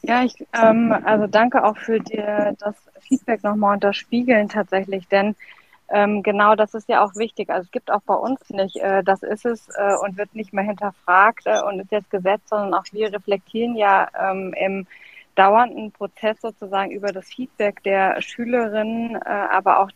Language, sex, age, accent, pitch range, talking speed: German, female, 20-39, German, 200-225 Hz, 190 wpm